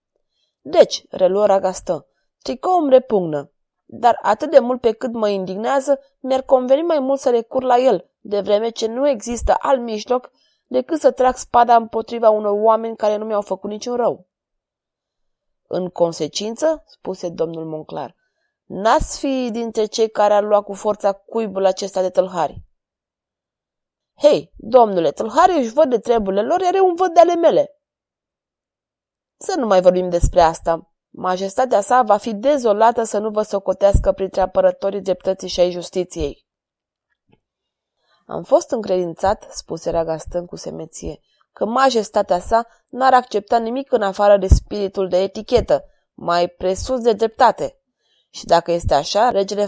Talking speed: 150 wpm